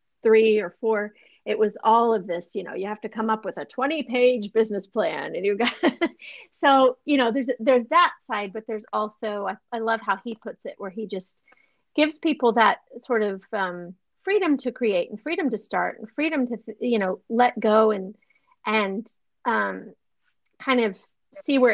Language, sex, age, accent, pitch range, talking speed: English, female, 40-59, American, 205-260 Hz, 200 wpm